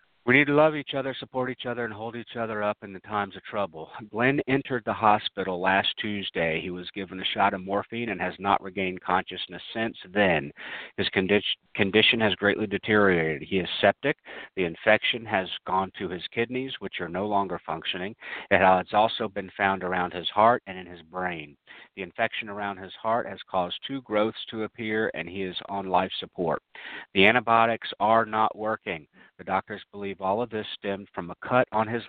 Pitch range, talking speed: 90-110 Hz, 195 wpm